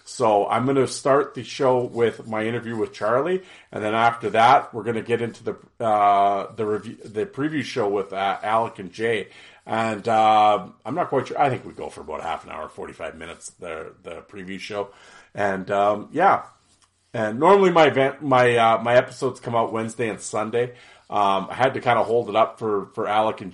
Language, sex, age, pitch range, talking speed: English, male, 40-59, 100-115 Hz, 210 wpm